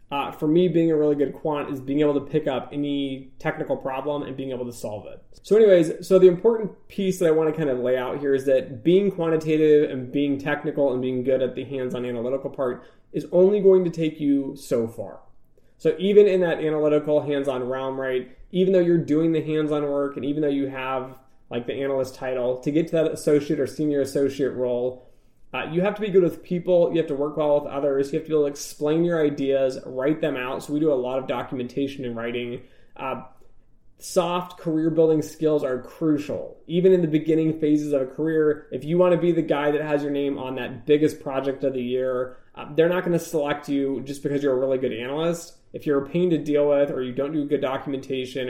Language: English